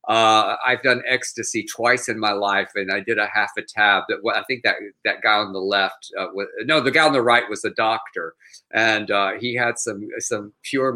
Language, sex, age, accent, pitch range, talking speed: English, male, 50-69, American, 115-155 Hz, 235 wpm